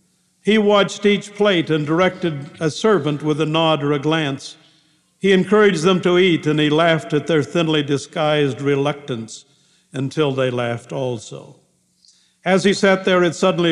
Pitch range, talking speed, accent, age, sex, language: 145-180 Hz, 160 wpm, American, 60-79, male, English